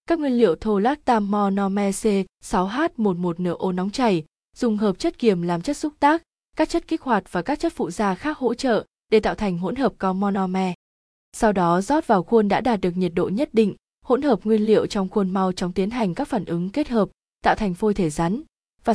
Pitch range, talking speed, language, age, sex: 195-240 Hz, 230 wpm, Vietnamese, 20-39, female